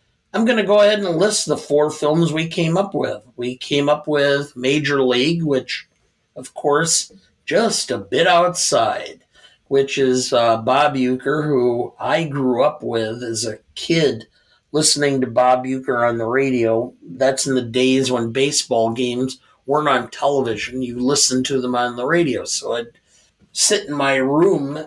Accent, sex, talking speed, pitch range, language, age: American, male, 170 wpm, 120-150 Hz, English, 50-69